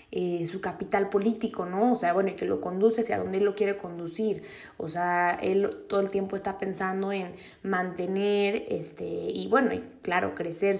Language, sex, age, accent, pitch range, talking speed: Spanish, female, 20-39, Mexican, 185-215 Hz, 180 wpm